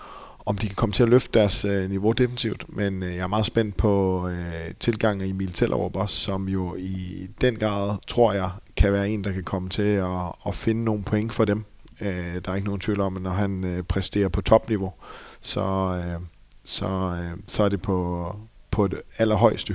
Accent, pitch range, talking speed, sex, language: native, 95-110 Hz, 200 wpm, male, Danish